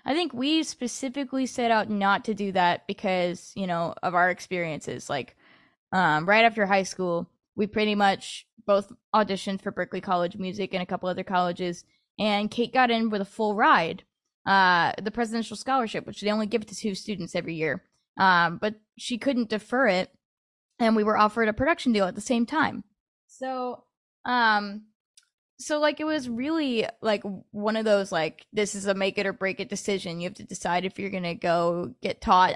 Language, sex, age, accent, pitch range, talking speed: English, female, 10-29, American, 185-230 Hz, 195 wpm